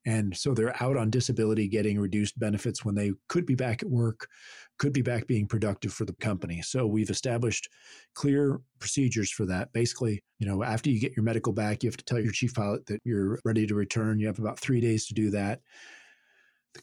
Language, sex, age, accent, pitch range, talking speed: English, male, 40-59, American, 105-125 Hz, 220 wpm